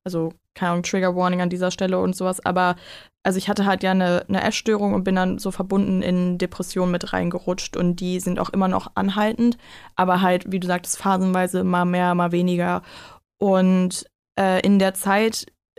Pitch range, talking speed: 180-195 Hz, 180 wpm